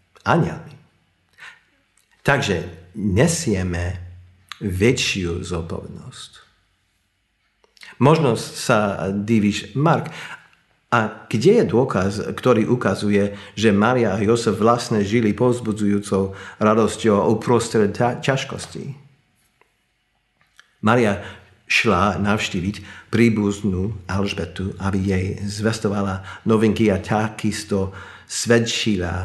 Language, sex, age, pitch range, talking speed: Slovak, male, 50-69, 95-115 Hz, 80 wpm